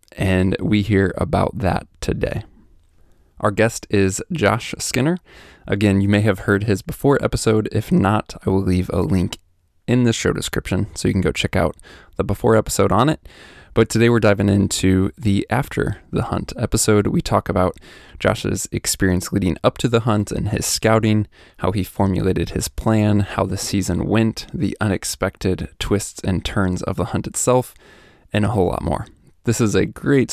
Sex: male